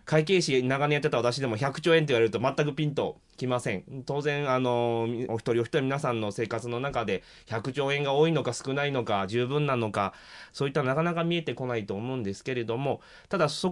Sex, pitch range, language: male, 115-170 Hz, Japanese